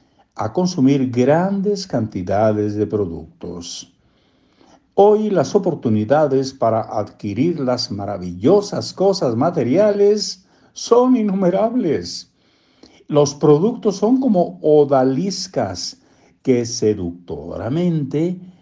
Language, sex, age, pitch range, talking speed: Spanish, male, 60-79, 110-180 Hz, 75 wpm